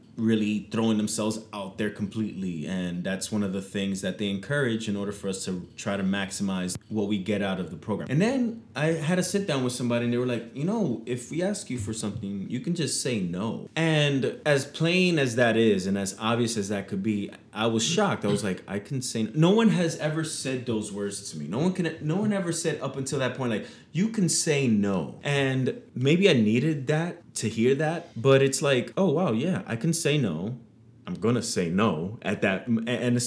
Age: 20-39